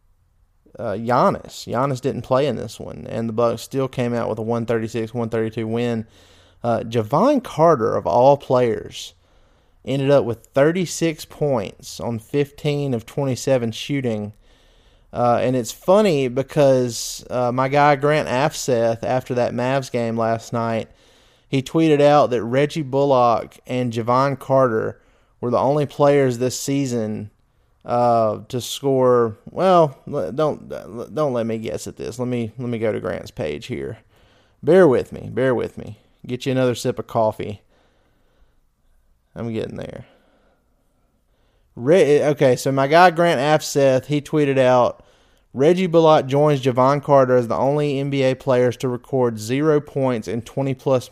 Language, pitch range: English, 115-140 Hz